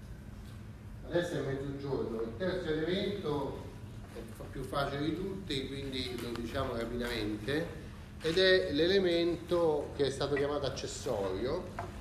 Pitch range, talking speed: 110-160 Hz, 115 wpm